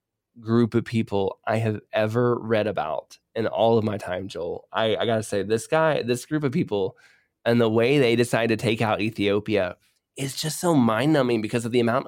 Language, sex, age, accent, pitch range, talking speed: English, male, 20-39, American, 105-125 Hz, 205 wpm